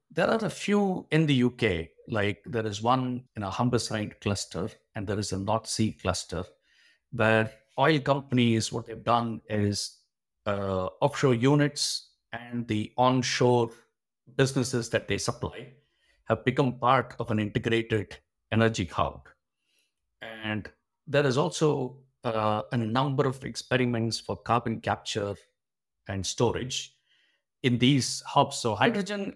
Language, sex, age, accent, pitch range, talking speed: English, male, 50-69, Indian, 110-135 Hz, 135 wpm